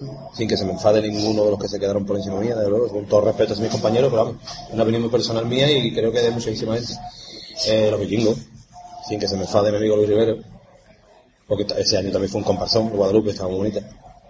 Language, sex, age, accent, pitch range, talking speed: Spanish, male, 30-49, Spanish, 100-125 Hz, 250 wpm